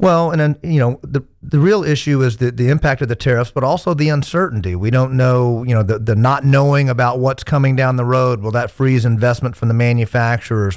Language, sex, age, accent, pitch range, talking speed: English, male, 40-59, American, 120-140 Hz, 235 wpm